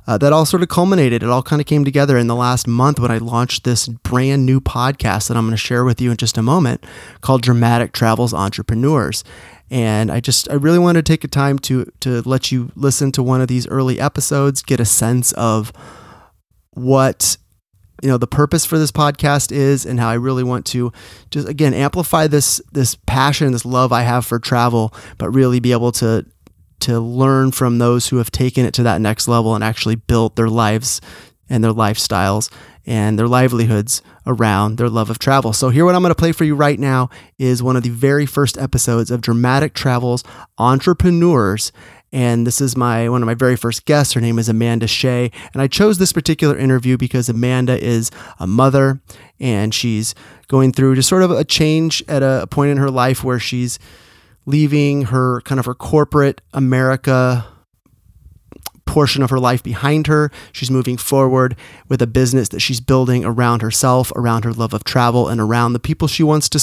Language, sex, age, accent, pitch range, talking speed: English, male, 30-49, American, 115-135 Hz, 200 wpm